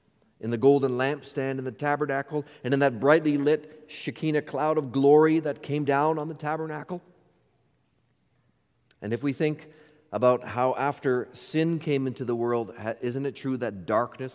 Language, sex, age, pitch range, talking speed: English, male, 40-59, 125-185 Hz, 165 wpm